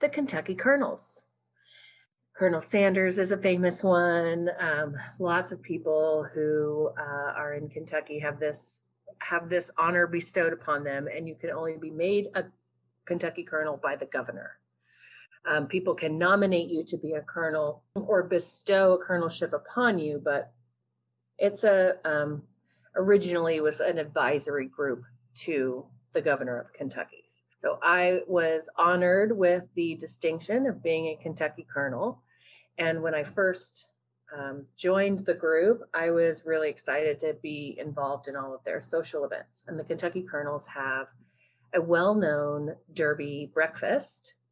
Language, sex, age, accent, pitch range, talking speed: English, female, 30-49, American, 145-180 Hz, 150 wpm